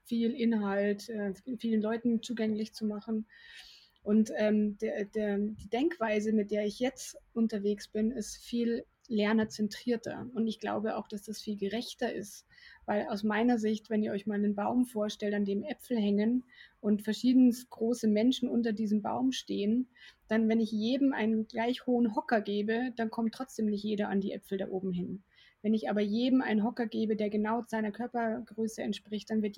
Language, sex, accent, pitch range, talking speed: German, female, German, 205-235 Hz, 175 wpm